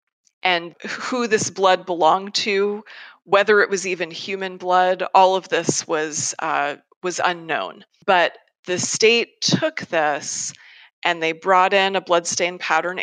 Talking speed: 140 wpm